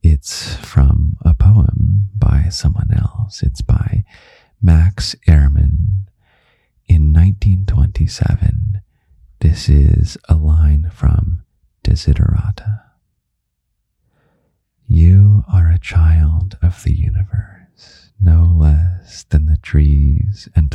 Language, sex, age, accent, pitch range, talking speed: English, male, 30-49, American, 75-95 Hz, 90 wpm